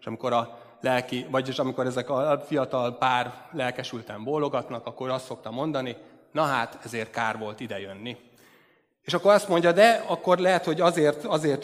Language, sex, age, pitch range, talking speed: Hungarian, male, 30-49, 125-155 Hz, 160 wpm